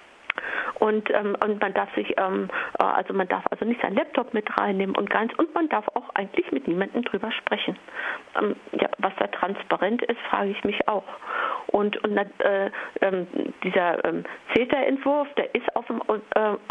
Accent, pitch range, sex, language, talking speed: German, 195-255 Hz, female, German, 160 wpm